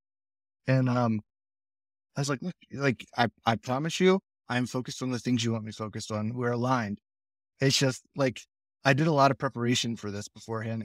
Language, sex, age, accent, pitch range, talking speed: English, male, 20-39, American, 105-135 Hz, 195 wpm